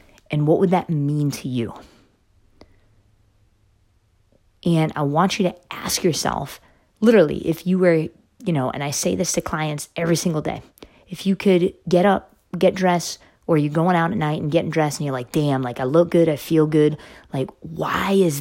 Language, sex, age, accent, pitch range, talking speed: English, female, 30-49, American, 145-180 Hz, 190 wpm